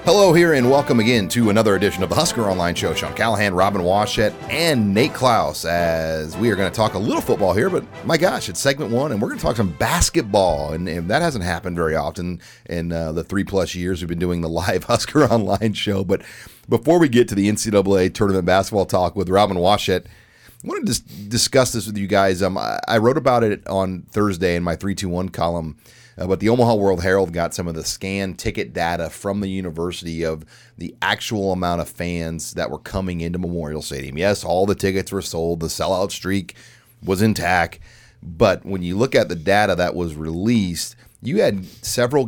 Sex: male